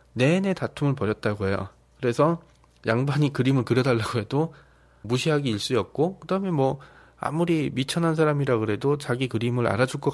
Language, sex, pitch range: Korean, male, 115-160 Hz